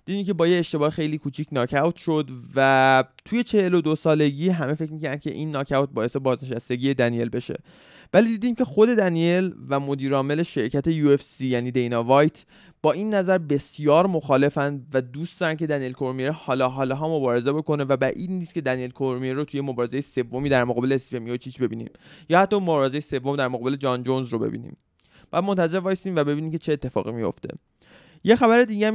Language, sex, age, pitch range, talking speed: Persian, male, 20-39, 130-160 Hz, 185 wpm